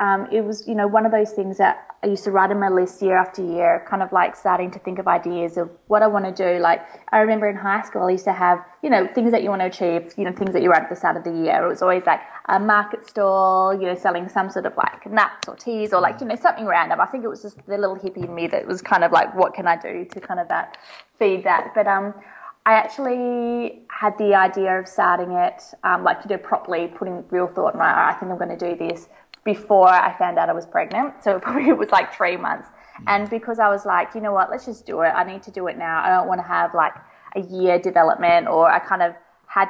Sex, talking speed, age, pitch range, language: female, 285 wpm, 20-39, 180-210 Hz, English